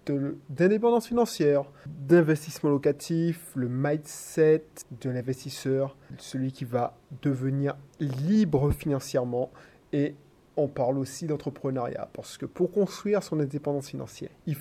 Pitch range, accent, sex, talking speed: 135-170 Hz, French, male, 110 wpm